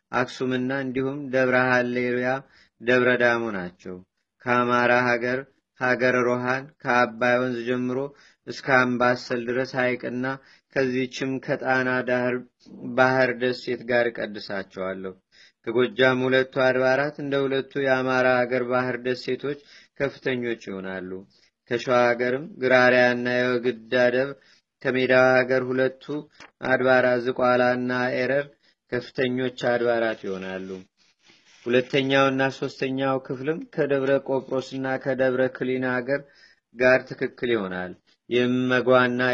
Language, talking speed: Amharic, 95 wpm